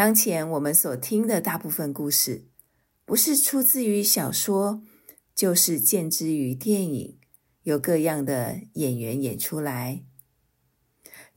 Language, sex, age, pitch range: Chinese, female, 50-69, 145-205 Hz